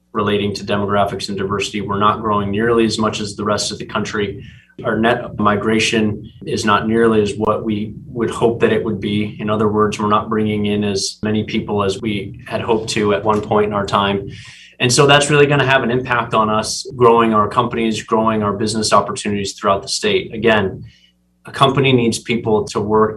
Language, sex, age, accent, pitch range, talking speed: English, male, 20-39, American, 100-115 Hz, 205 wpm